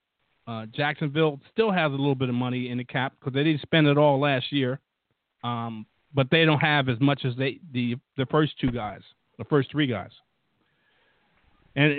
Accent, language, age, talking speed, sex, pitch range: American, English, 50-69, 195 wpm, male, 125-160 Hz